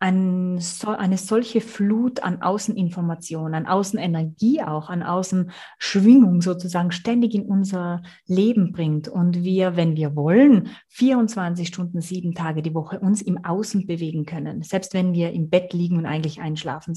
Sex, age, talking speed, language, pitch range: female, 30-49, 145 wpm, German, 165-210 Hz